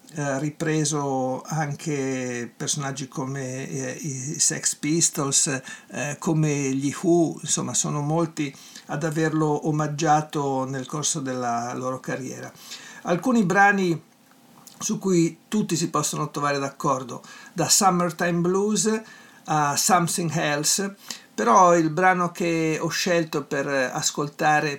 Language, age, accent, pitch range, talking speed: Italian, 60-79, native, 150-180 Hz, 115 wpm